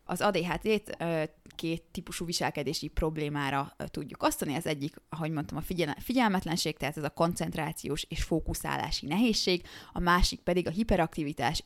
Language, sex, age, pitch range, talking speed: Hungarian, female, 20-39, 150-180 Hz, 135 wpm